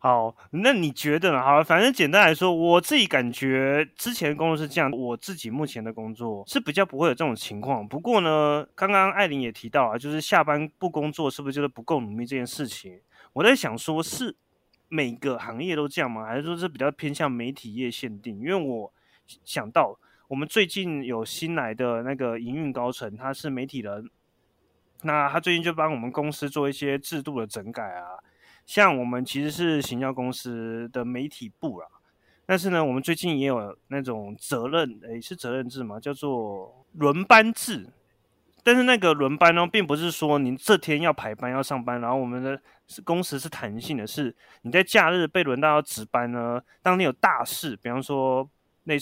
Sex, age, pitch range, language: male, 20-39, 120-160 Hz, Chinese